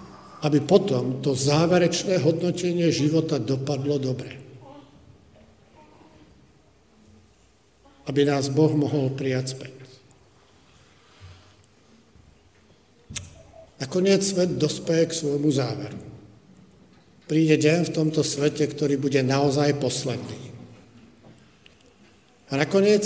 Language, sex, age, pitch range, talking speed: Slovak, male, 50-69, 130-160 Hz, 80 wpm